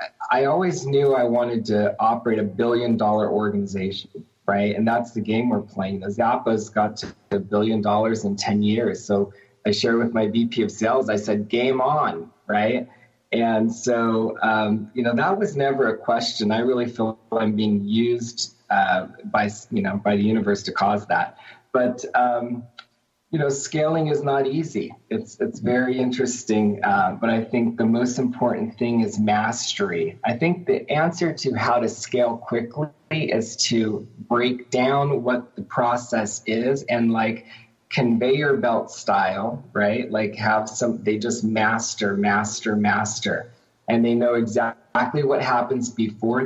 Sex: male